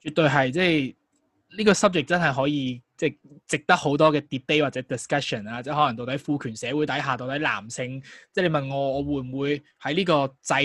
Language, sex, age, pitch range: Chinese, male, 20-39, 130-165 Hz